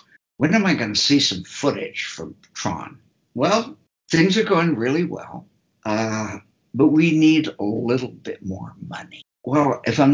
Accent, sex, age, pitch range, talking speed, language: American, male, 60-79, 110-150 Hz, 165 wpm, English